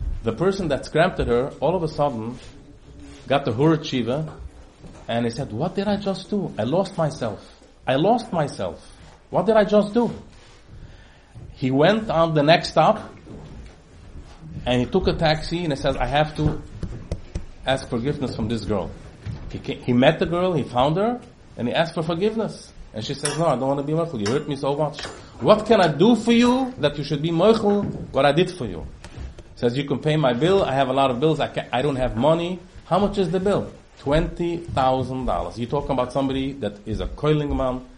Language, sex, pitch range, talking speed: English, male, 115-170 Hz, 210 wpm